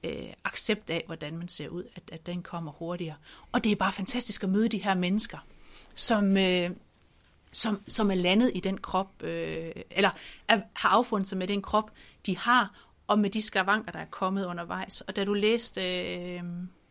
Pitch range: 180-230 Hz